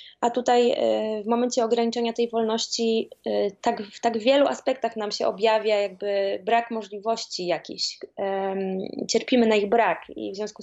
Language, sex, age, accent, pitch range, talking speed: Polish, female, 20-39, native, 205-245 Hz, 140 wpm